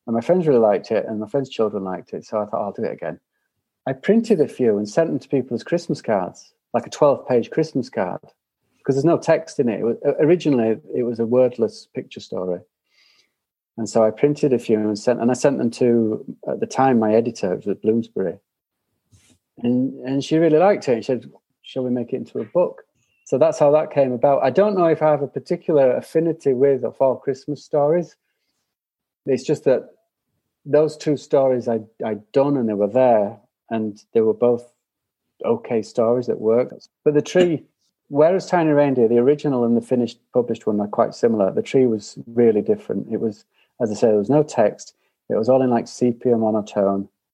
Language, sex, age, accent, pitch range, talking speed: English, male, 40-59, British, 110-145 Hz, 210 wpm